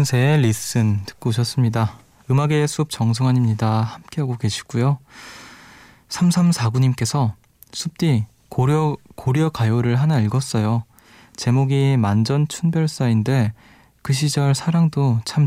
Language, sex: Korean, male